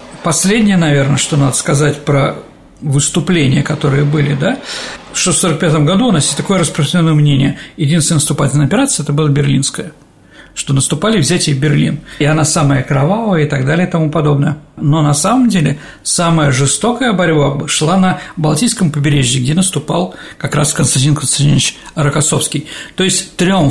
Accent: native